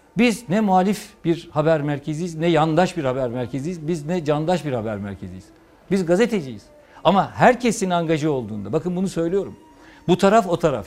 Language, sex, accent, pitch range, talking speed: Turkish, male, native, 130-185 Hz, 165 wpm